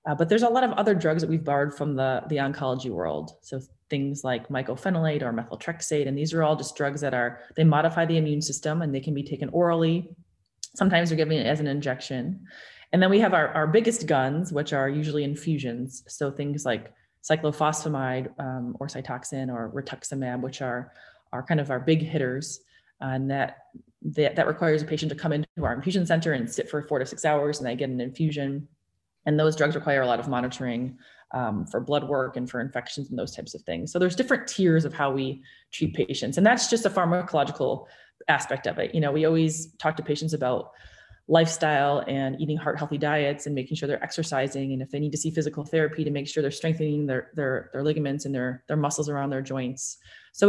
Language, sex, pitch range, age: English, female, 135-165 Hz, 20-39